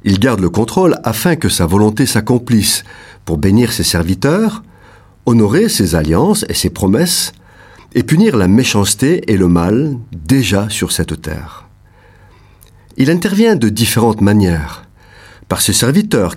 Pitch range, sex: 95-135 Hz, male